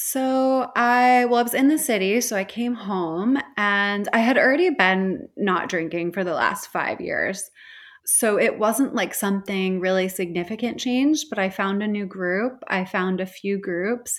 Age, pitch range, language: 20-39, 180-235 Hz, English